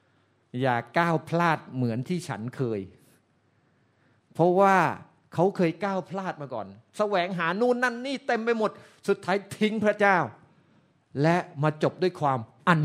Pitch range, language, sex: 125-180 Hz, Thai, male